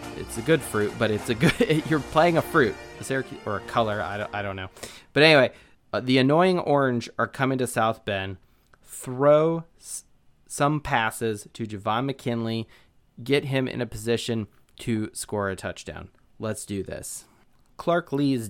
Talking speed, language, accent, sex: 170 wpm, English, American, male